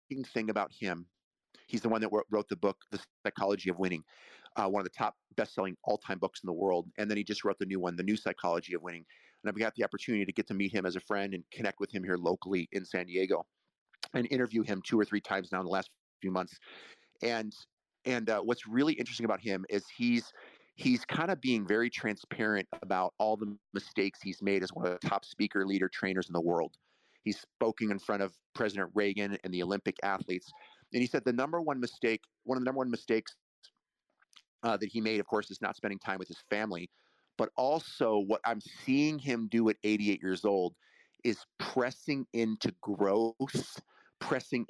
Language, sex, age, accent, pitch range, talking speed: English, male, 30-49, American, 95-115 Hz, 215 wpm